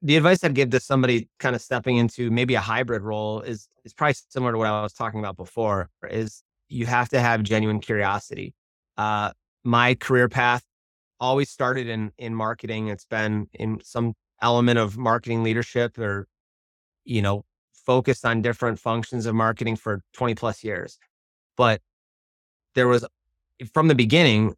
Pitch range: 105-125 Hz